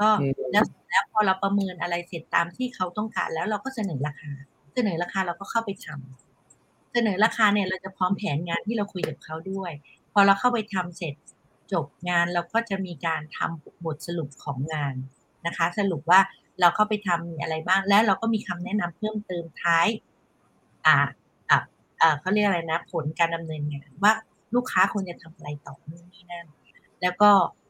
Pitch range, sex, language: 160-210 Hz, female, English